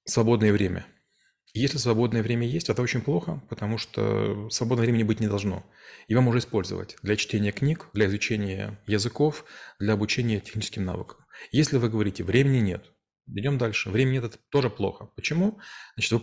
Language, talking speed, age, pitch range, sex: Russian, 165 wpm, 30-49, 105-125 Hz, male